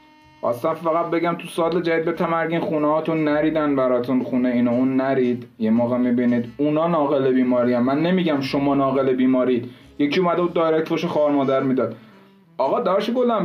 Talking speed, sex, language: 165 wpm, male, Persian